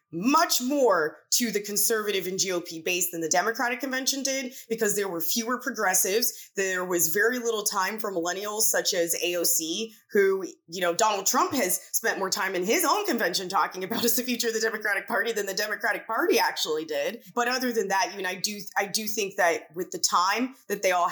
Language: English